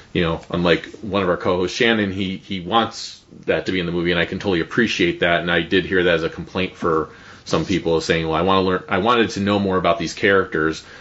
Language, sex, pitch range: English, male, 90-115 Hz